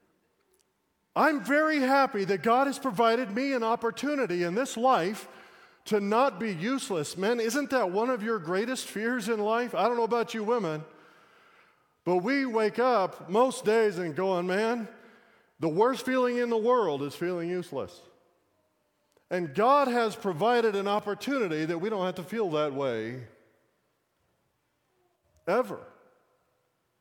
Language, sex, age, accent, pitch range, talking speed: English, male, 40-59, American, 170-230 Hz, 145 wpm